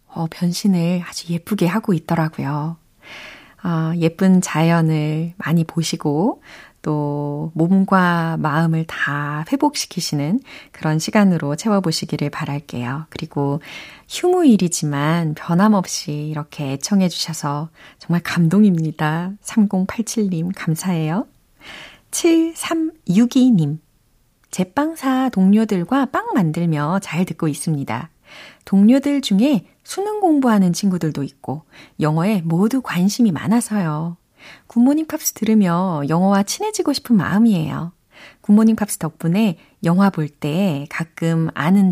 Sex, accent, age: female, native, 30-49